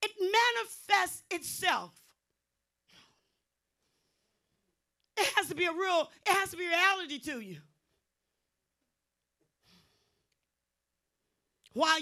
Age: 40-59